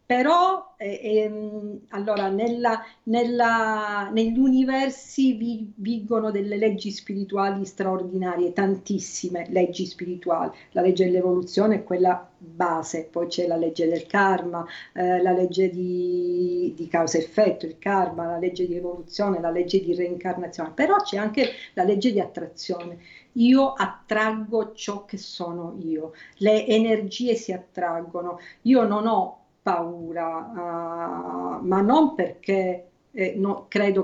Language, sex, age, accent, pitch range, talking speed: Italian, female, 50-69, native, 180-230 Hz, 125 wpm